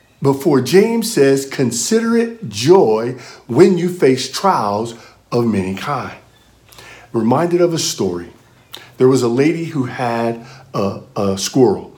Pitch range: 120-175 Hz